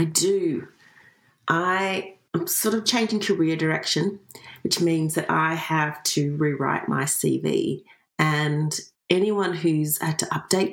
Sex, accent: female, Australian